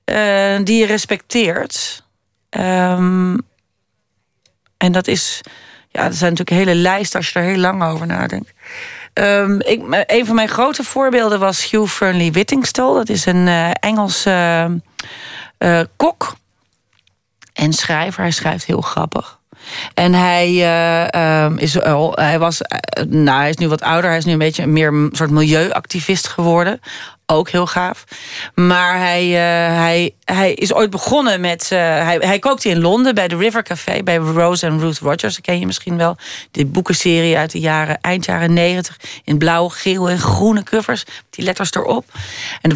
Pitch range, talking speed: 165-200 Hz, 160 wpm